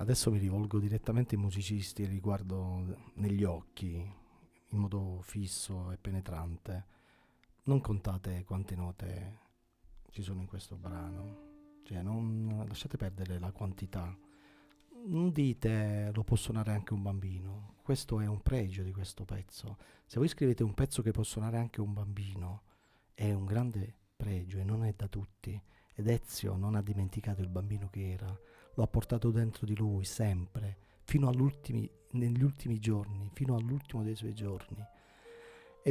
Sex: male